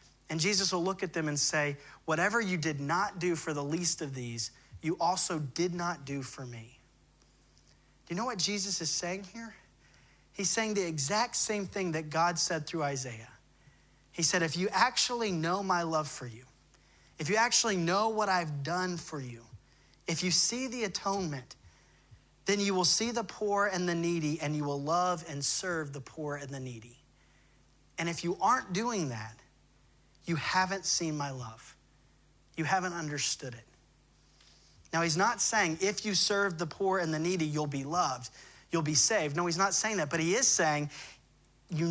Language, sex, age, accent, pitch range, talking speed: English, male, 30-49, American, 145-190 Hz, 190 wpm